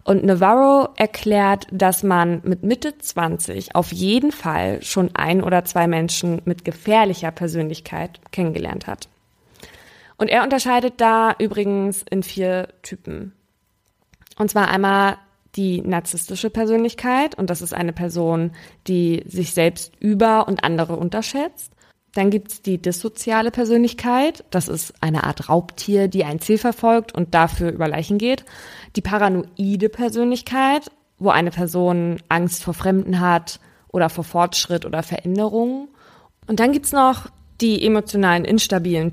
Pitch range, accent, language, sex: 170-215 Hz, German, German, female